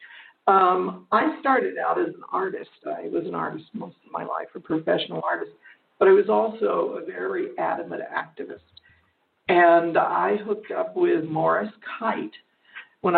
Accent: American